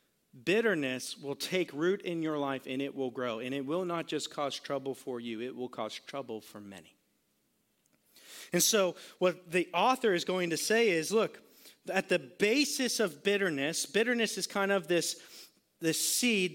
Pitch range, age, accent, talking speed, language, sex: 150-205 Hz, 40-59, American, 180 wpm, English, male